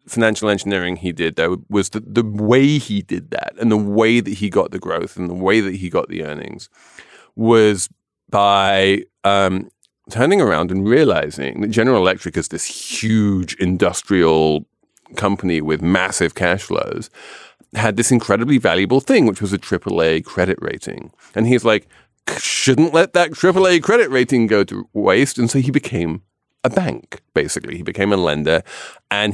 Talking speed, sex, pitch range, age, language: 170 wpm, male, 90-125 Hz, 30-49, English